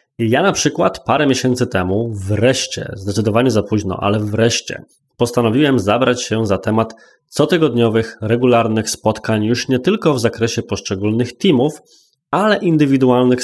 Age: 20-39